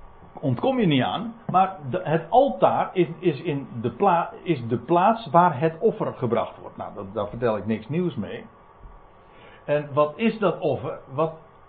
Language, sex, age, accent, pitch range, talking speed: Dutch, male, 60-79, Dutch, 120-180 Hz, 180 wpm